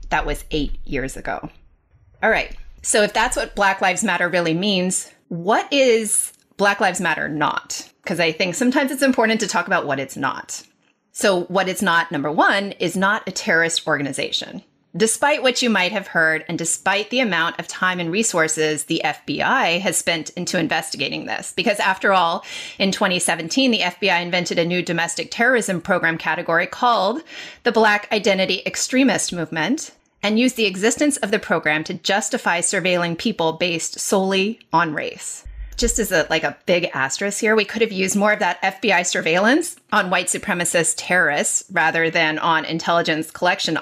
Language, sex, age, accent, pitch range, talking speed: English, female, 30-49, American, 165-215 Hz, 175 wpm